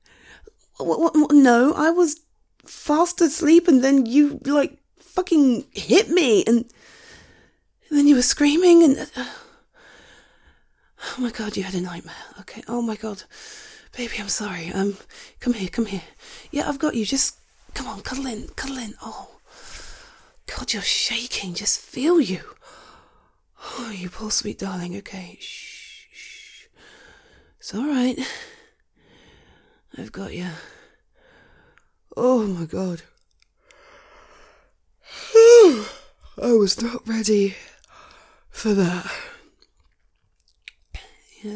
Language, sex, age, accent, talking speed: English, female, 30-49, British, 115 wpm